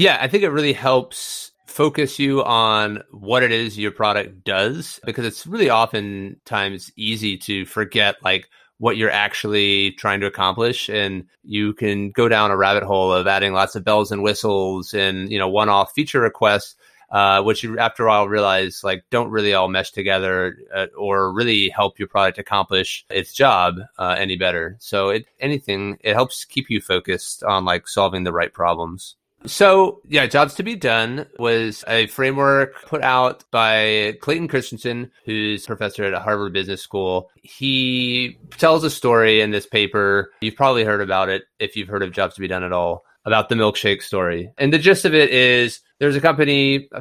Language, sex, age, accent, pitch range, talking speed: English, male, 30-49, American, 100-130 Hz, 185 wpm